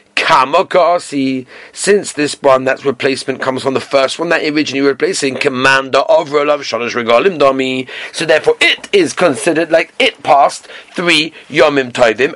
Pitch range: 140-200 Hz